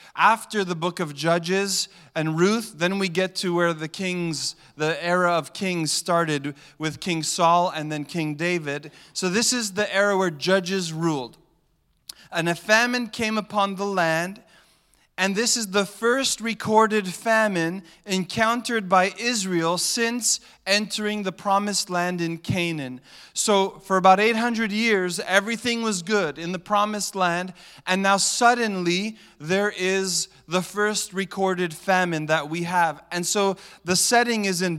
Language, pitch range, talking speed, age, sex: English, 170-210 Hz, 150 wpm, 30-49, male